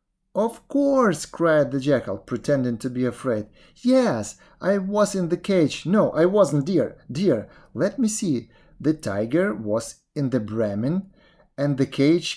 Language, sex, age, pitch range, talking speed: English, male, 30-49, 130-180 Hz, 155 wpm